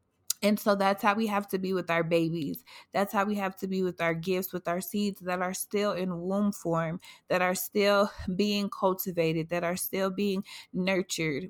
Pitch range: 175-205 Hz